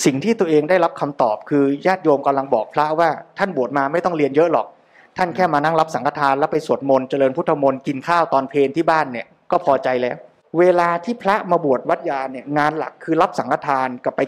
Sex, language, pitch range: male, Thai, 150-200 Hz